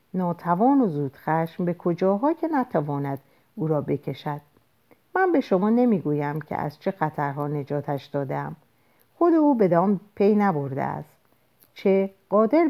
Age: 50-69